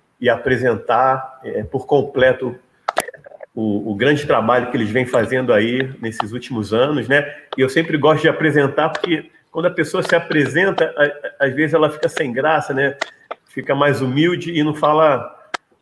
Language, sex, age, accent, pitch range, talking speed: Portuguese, male, 40-59, Brazilian, 130-165 Hz, 160 wpm